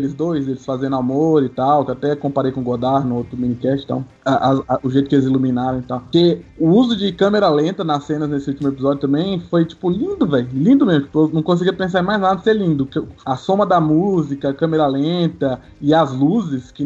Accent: Brazilian